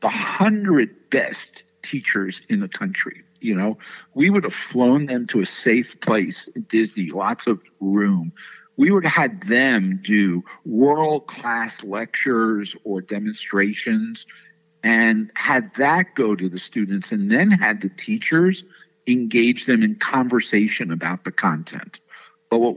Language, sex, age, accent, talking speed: English, male, 50-69, American, 140 wpm